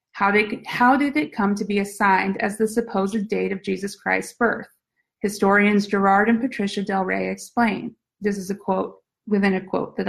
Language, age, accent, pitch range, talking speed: English, 30-49, American, 190-235 Hz, 180 wpm